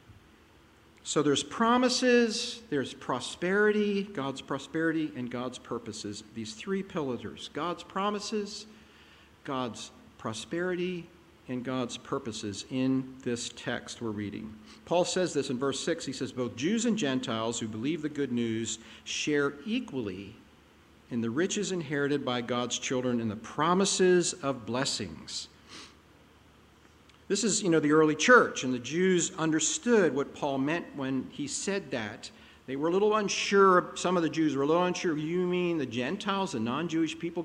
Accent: American